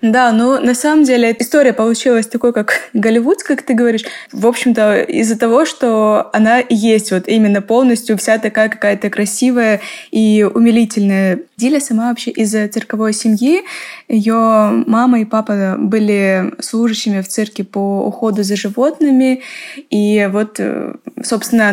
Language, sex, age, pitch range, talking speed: Russian, female, 20-39, 205-245 Hz, 140 wpm